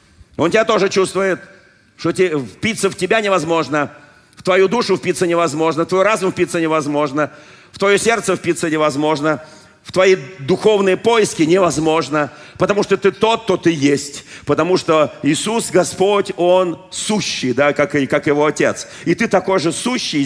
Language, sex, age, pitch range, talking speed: Russian, male, 50-69, 140-195 Hz, 155 wpm